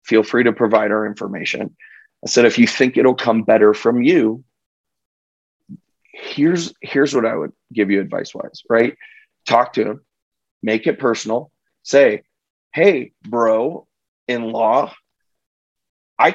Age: 30-49